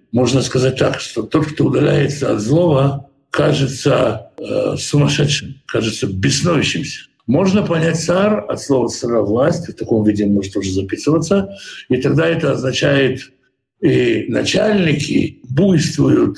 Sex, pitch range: male, 125-165 Hz